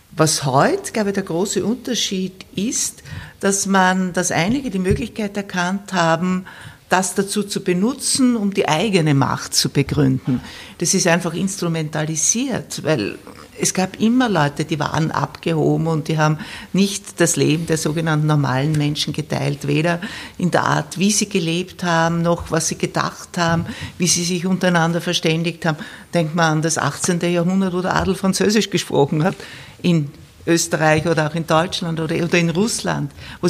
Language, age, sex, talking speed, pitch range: German, 60-79, female, 160 wpm, 165-205 Hz